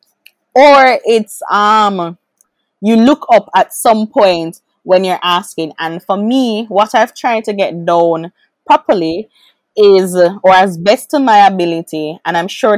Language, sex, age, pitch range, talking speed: English, female, 20-39, 175-225 Hz, 150 wpm